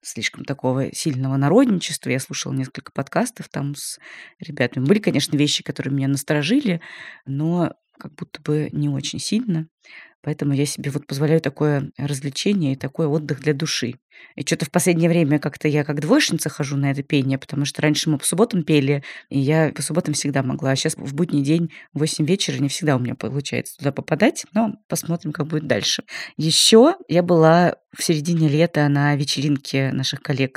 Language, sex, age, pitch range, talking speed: Russian, female, 20-39, 140-160 Hz, 180 wpm